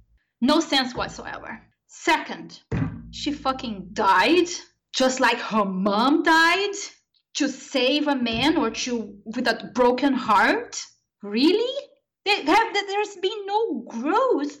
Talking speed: 110 wpm